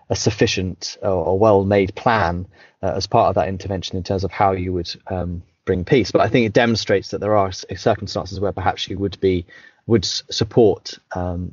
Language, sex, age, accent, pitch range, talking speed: English, male, 30-49, British, 95-110 Hz, 210 wpm